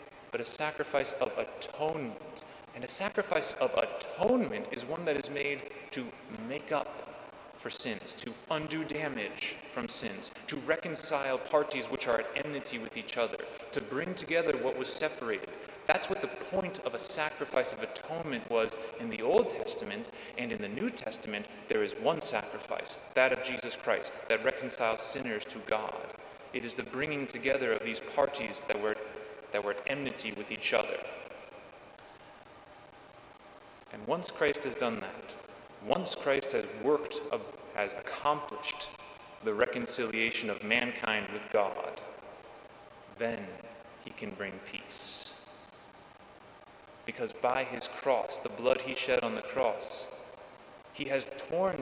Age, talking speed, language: 30-49, 145 wpm, English